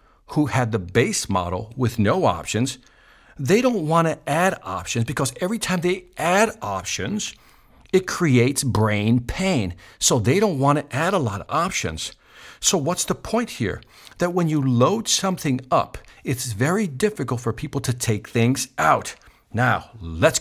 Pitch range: 105-145 Hz